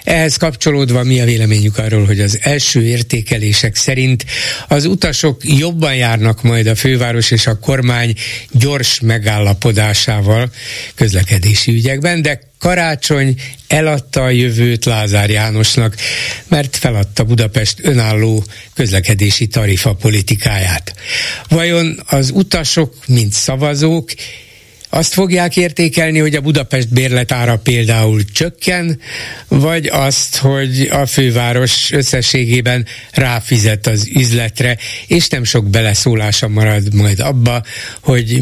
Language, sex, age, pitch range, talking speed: Hungarian, male, 60-79, 110-135 Hz, 110 wpm